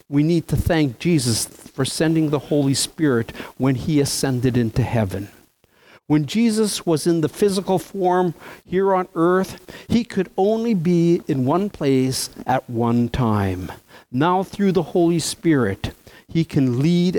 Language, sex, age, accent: English, male, 60-79, American